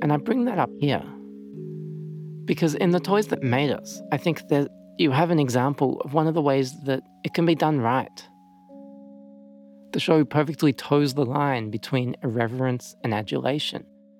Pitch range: 115-155 Hz